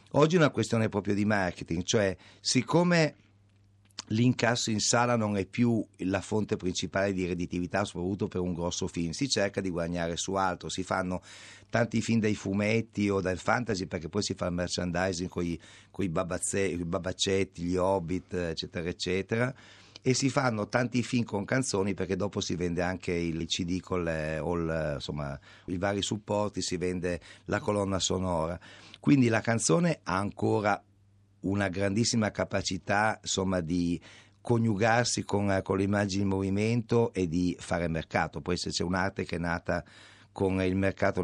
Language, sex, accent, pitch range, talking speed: Italian, male, native, 90-110 Hz, 165 wpm